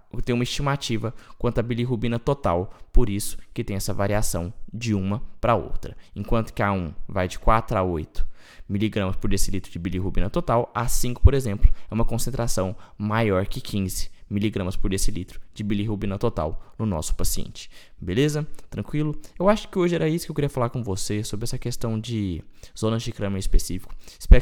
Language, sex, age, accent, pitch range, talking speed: Portuguese, male, 20-39, Brazilian, 100-125 Hz, 175 wpm